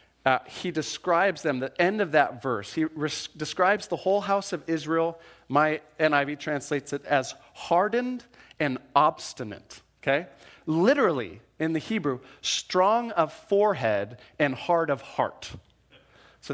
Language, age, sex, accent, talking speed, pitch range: English, 40-59, male, American, 140 wpm, 125-170 Hz